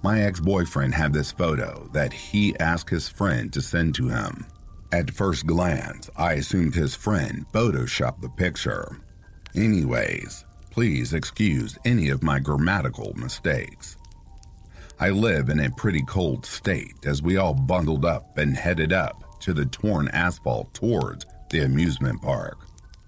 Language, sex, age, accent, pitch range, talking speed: English, male, 50-69, American, 75-95 Hz, 145 wpm